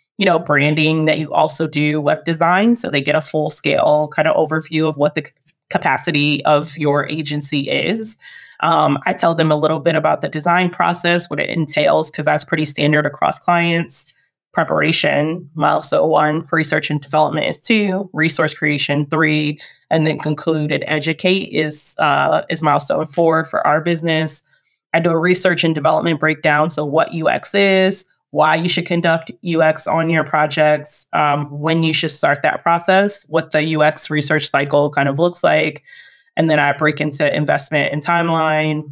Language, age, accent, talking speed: English, 20-39, American, 175 wpm